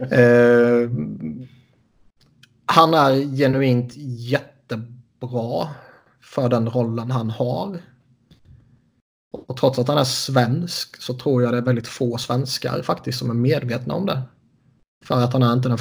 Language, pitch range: Swedish, 120-130 Hz